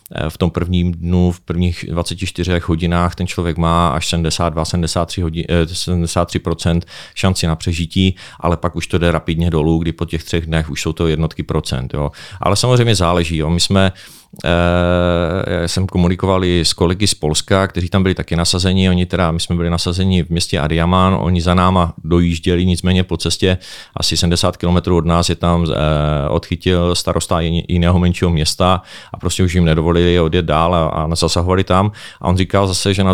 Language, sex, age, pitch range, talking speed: Czech, male, 30-49, 85-95 Hz, 175 wpm